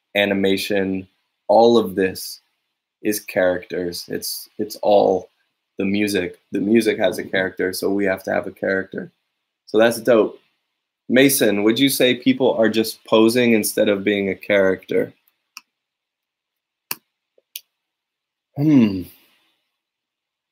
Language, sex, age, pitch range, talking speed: English, male, 20-39, 100-145 Hz, 115 wpm